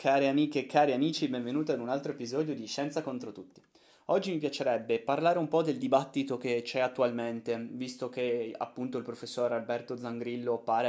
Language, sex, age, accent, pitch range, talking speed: Italian, male, 20-39, native, 120-150 Hz, 180 wpm